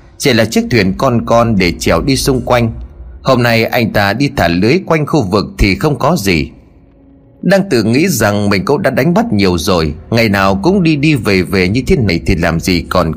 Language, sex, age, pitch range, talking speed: Vietnamese, male, 30-49, 90-150 Hz, 230 wpm